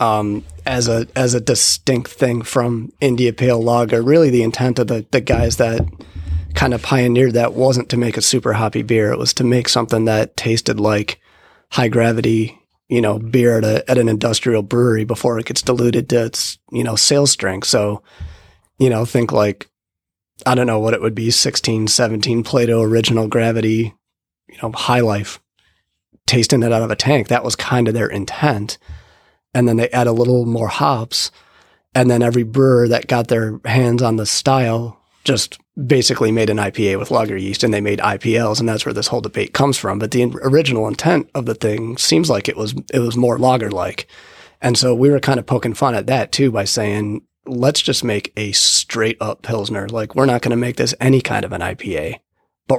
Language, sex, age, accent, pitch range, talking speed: English, male, 30-49, American, 110-125 Hz, 205 wpm